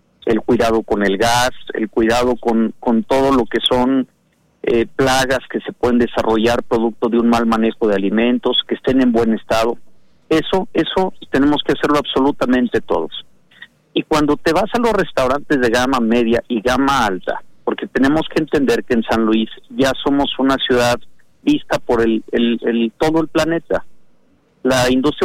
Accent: Mexican